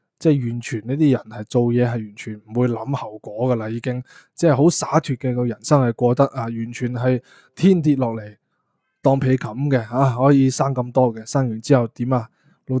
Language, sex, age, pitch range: Chinese, male, 20-39, 120-140 Hz